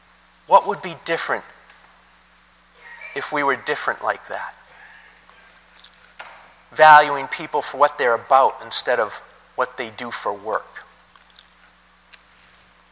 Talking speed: 105 wpm